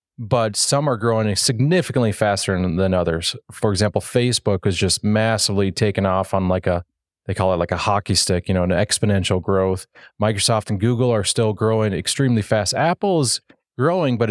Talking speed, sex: 175 wpm, male